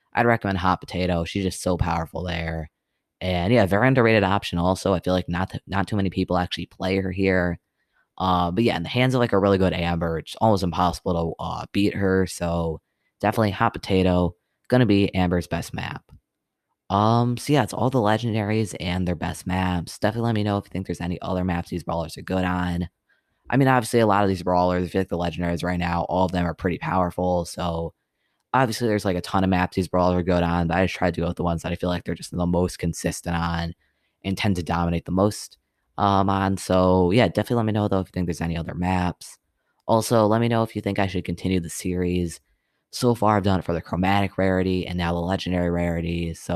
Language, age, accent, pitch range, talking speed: English, 20-39, American, 85-100 Hz, 240 wpm